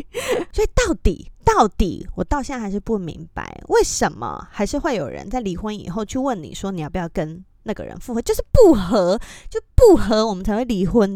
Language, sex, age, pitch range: Chinese, female, 20-39, 190-295 Hz